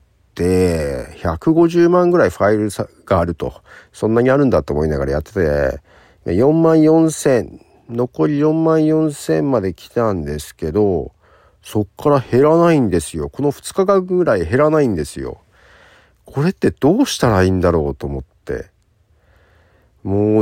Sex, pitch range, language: male, 90-145 Hz, Japanese